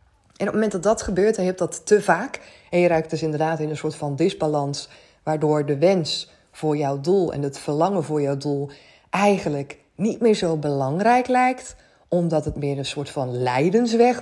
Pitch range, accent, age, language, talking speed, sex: 150-210 Hz, Dutch, 20-39, Dutch, 205 wpm, female